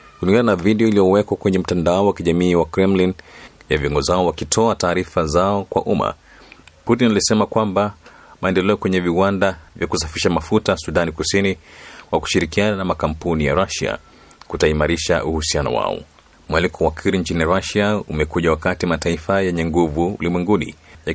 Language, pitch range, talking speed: Swahili, 80-95 Hz, 140 wpm